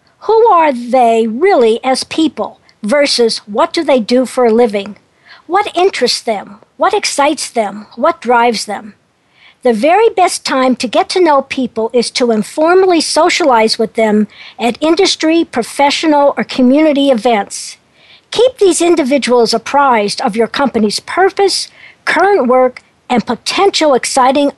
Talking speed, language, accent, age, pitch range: 140 wpm, English, American, 60-79, 235-325 Hz